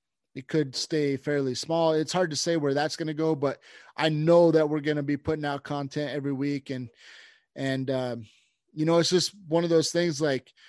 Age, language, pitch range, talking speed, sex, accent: 20-39, English, 135-155 Hz, 220 wpm, male, American